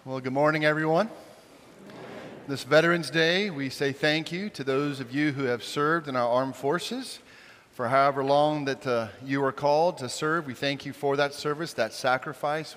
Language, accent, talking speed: English, American, 190 wpm